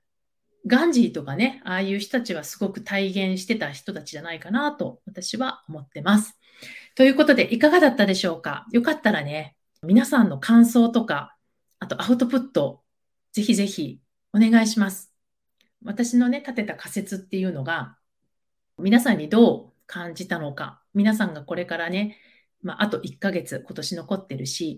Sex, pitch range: female, 175-235 Hz